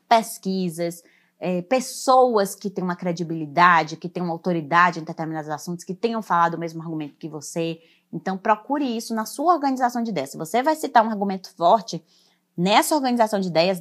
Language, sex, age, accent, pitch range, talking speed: Portuguese, female, 20-39, Brazilian, 165-220 Hz, 175 wpm